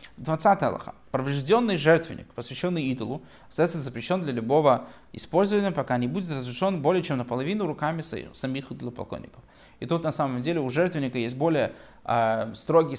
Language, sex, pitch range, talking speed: Russian, male, 125-160 Hz, 150 wpm